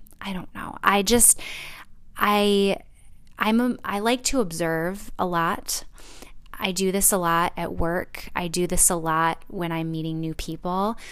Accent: American